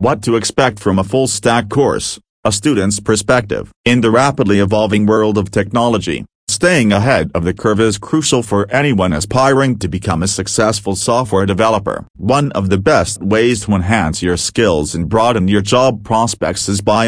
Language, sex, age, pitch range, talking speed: English, male, 40-59, 100-120 Hz, 170 wpm